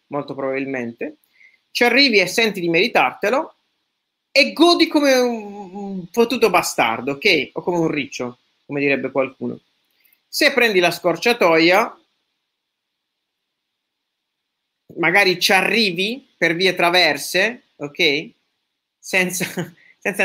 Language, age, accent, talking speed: Italian, 40-59, native, 105 wpm